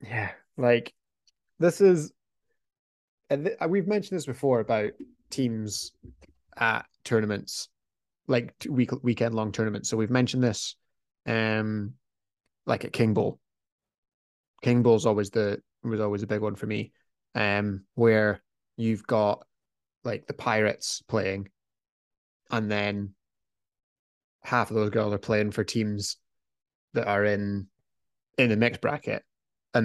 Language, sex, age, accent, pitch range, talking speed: English, male, 20-39, British, 100-115 Hz, 130 wpm